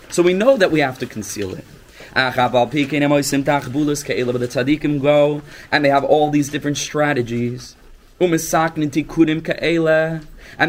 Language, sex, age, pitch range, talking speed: English, male, 30-49, 115-150 Hz, 95 wpm